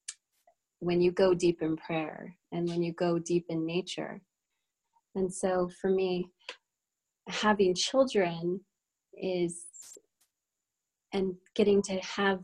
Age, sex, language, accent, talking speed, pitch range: 30-49, female, English, American, 115 wpm, 170-190 Hz